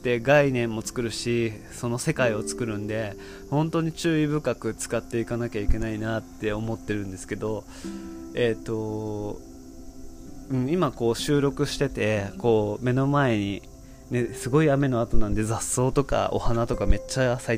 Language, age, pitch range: Japanese, 20-39, 95-135 Hz